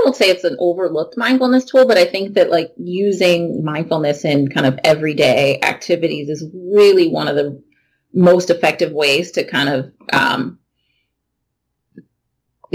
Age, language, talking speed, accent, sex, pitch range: 30-49, English, 150 wpm, American, female, 150-180 Hz